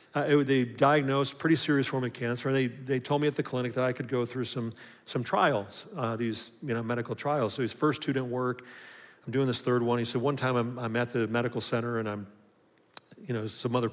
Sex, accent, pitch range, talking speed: male, American, 120-160 Hz, 250 wpm